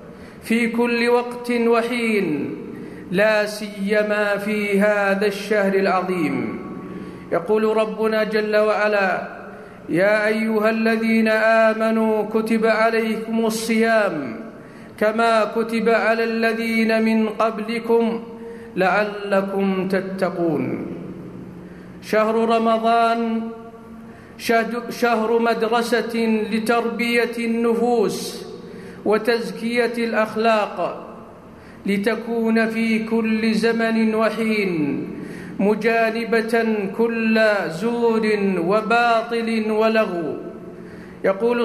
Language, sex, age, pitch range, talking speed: Arabic, male, 50-69, 215-230 Hz, 70 wpm